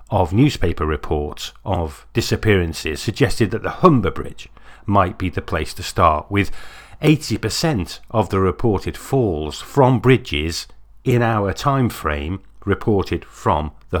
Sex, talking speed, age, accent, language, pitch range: male, 135 wpm, 50-69, British, English, 80-120 Hz